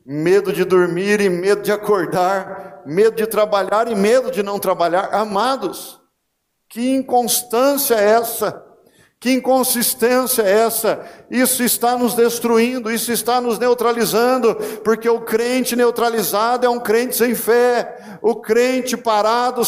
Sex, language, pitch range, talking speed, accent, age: male, Portuguese, 205-230 Hz, 135 wpm, Brazilian, 50-69